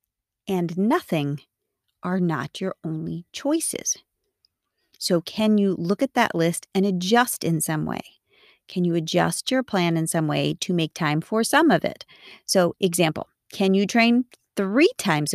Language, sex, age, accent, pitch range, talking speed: English, female, 30-49, American, 160-215 Hz, 160 wpm